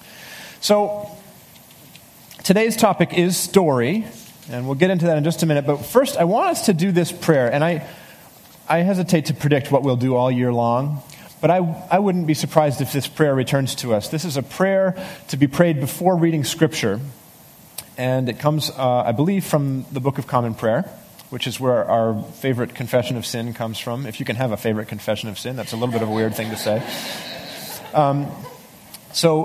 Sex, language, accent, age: male, English, American, 30-49